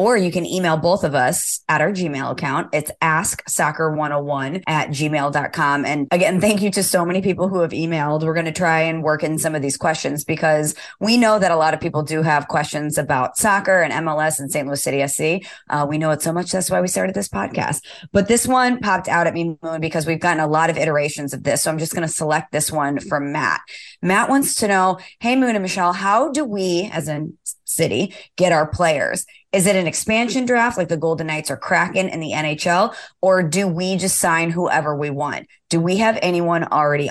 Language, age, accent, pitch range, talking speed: English, 30-49, American, 150-185 Hz, 225 wpm